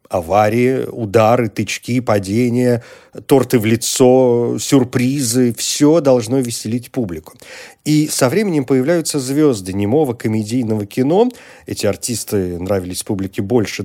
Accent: native